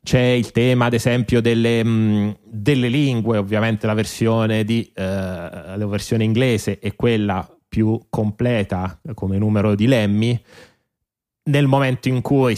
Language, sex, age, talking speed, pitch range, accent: Italian, male, 30-49, 140 wpm, 100-120 Hz, native